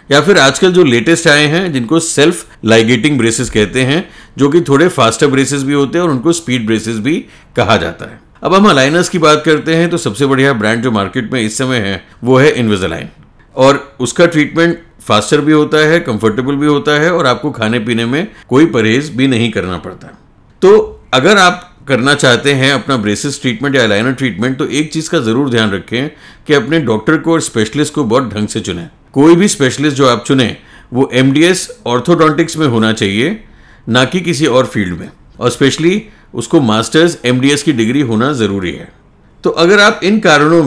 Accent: native